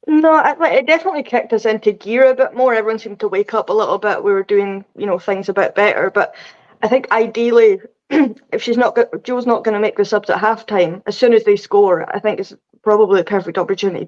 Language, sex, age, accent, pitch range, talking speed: English, female, 20-39, British, 195-235 Hz, 235 wpm